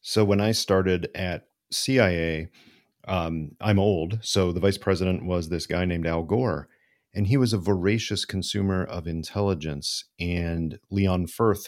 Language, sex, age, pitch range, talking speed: English, male, 40-59, 85-100 Hz, 155 wpm